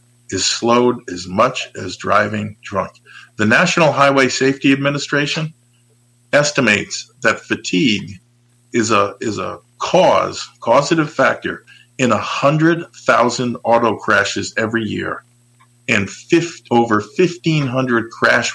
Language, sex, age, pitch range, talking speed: English, male, 50-69, 115-140 Hz, 115 wpm